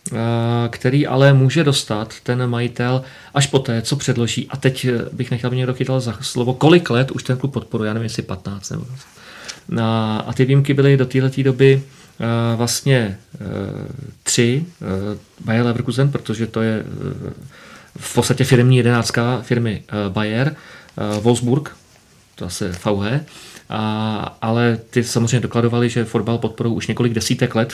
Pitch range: 115-135 Hz